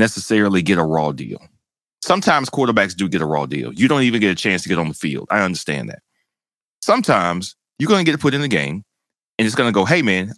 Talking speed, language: 245 wpm, English